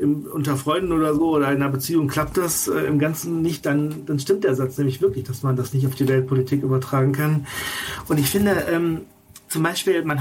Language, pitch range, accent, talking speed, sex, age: German, 135-165 Hz, German, 215 wpm, male, 40-59